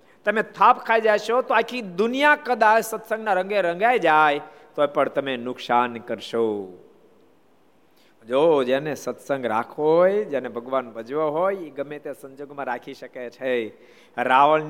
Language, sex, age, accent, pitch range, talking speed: Gujarati, male, 50-69, native, 140-185 Hz, 90 wpm